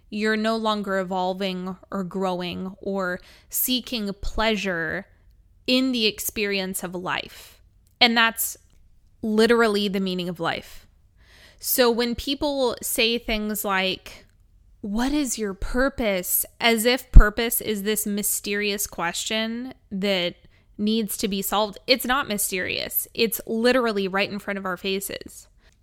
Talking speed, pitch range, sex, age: 125 wpm, 190-230 Hz, female, 20-39